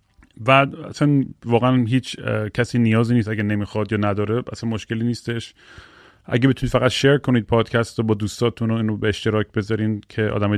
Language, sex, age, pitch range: Persian, male, 30-49, 105-120 Hz